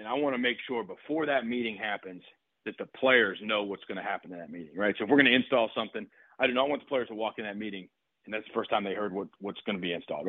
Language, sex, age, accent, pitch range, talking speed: English, male, 40-59, American, 105-135 Hz, 305 wpm